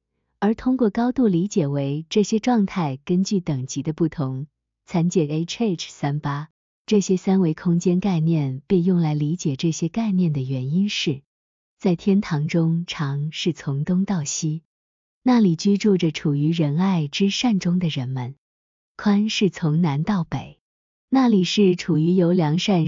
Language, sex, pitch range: Chinese, female, 150-195 Hz